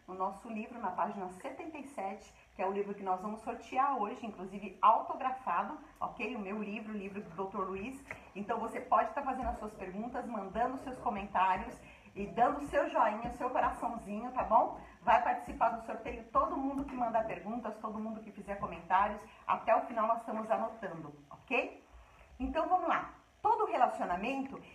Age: 40-59